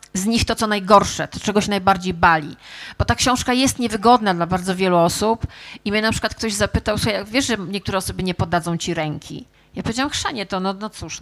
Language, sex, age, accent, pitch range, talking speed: Polish, female, 30-49, native, 190-225 Hz, 220 wpm